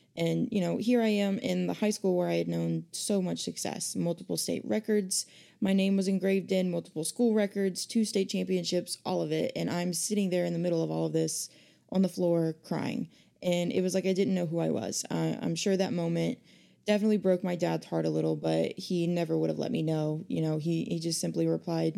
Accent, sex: American, female